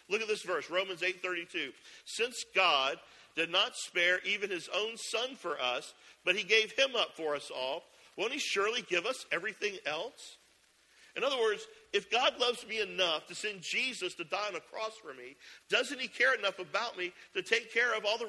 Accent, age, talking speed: American, 50-69, 205 wpm